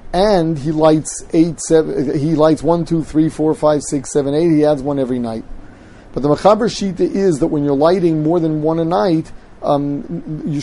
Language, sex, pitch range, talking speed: English, male, 115-160 Hz, 160 wpm